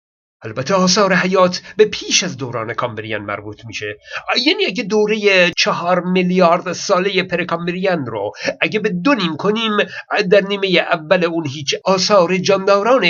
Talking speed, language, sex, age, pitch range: 135 wpm, Persian, male, 50-69, 150-210 Hz